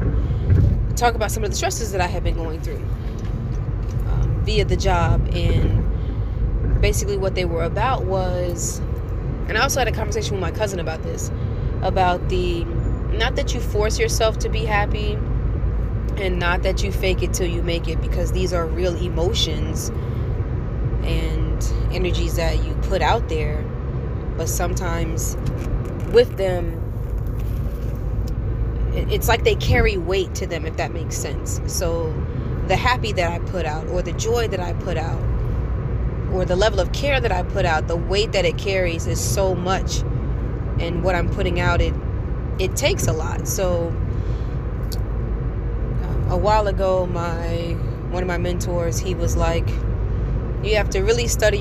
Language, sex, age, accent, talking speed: English, female, 20-39, American, 165 wpm